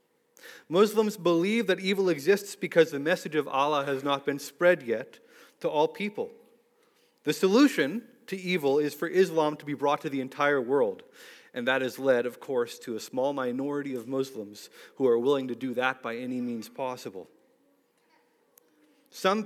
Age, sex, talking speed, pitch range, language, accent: 30-49, male, 170 wpm, 135-220 Hz, English, American